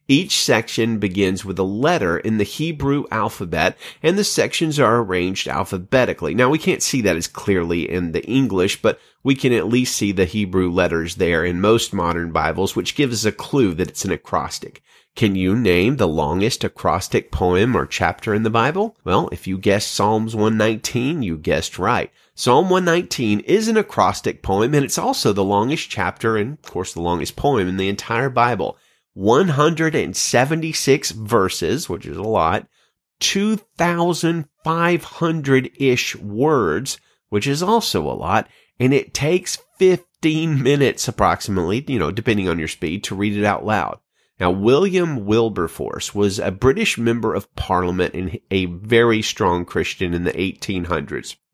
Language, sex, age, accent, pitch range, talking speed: English, male, 30-49, American, 95-145 Hz, 160 wpm